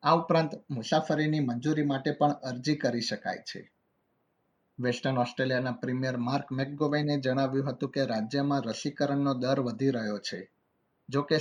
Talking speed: 110 wpm